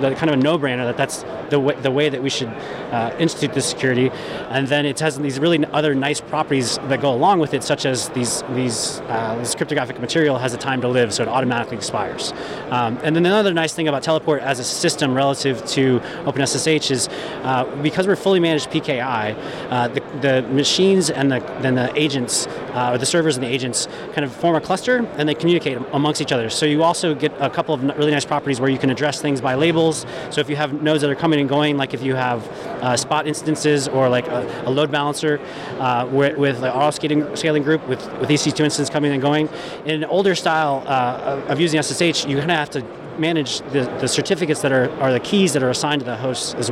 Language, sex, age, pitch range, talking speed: English, male, 30-49, 130-155 Hz, 230 wpm